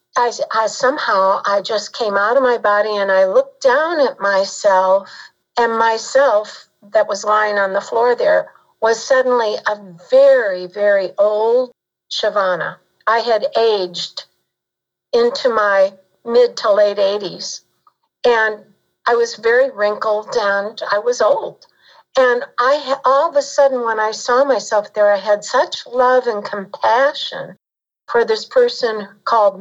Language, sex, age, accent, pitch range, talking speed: English, female, 60-79, American, 210-270 Hz, 145 wpm